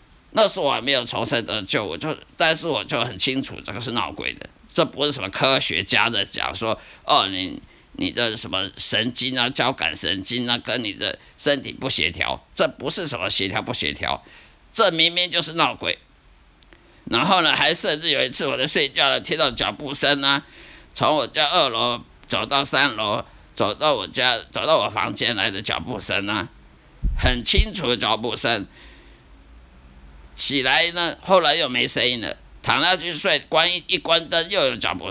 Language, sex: Chinese, male